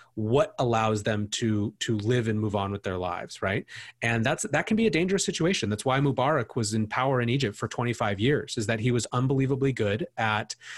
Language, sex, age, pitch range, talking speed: English, male, 30-49, 105-130 Hz, 215 wpm